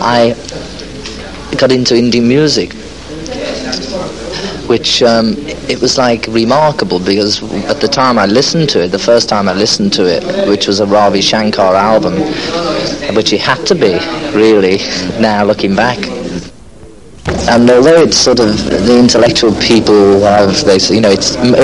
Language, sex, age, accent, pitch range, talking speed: English, male, 40-59, British, 105-125 Hz, 150 wpm